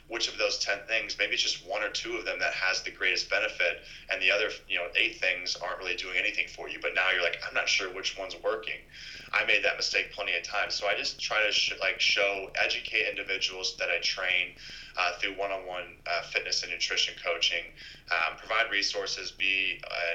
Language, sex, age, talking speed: English, male, 20-39, 220 wpm